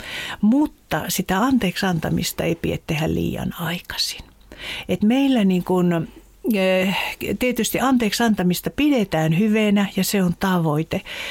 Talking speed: 105 wpm